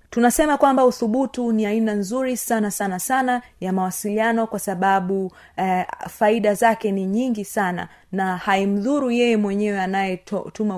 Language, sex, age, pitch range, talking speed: Swahili, female, 30-49, 180-220 Hz, 135 wpm